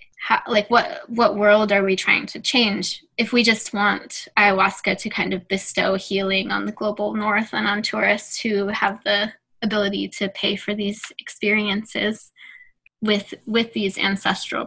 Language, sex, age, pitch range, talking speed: English, female, 10-29, 195-220 Hz, 165 wpm